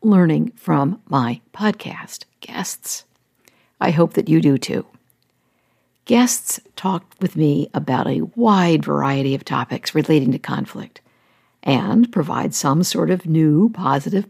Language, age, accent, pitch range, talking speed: English, 60-79, American, 160-225 Hz, 130 wpm